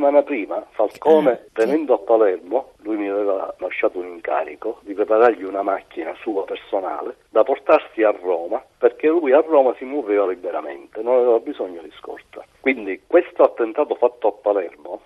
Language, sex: Italian, male